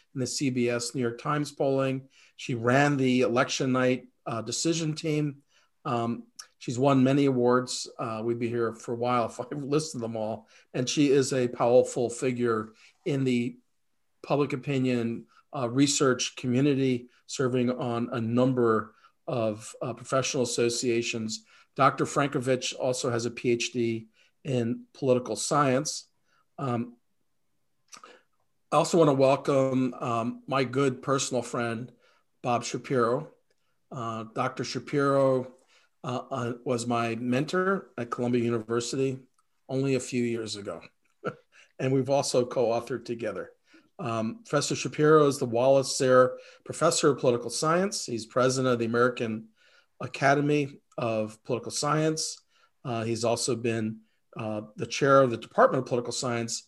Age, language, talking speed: 40-59, English, 135 wpm